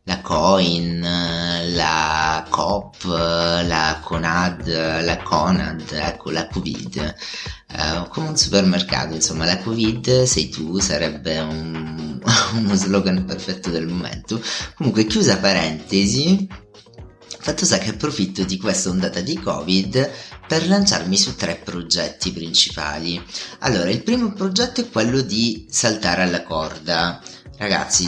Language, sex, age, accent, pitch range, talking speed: Italian, male, 30-49, native, 85-125 Hz, 120 wpm